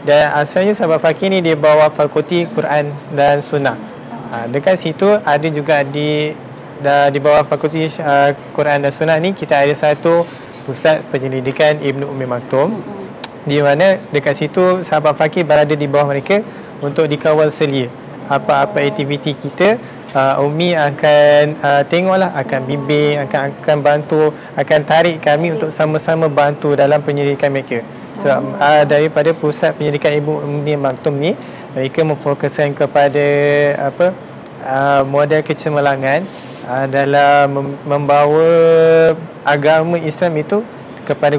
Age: 20-39